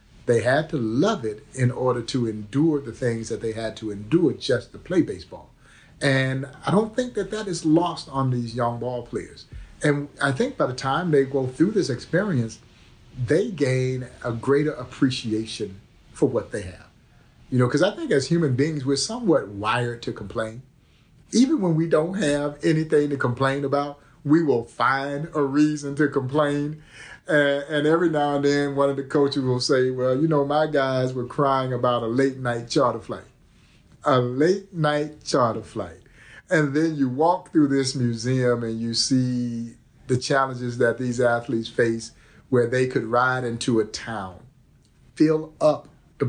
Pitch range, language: 120-145 Hz, English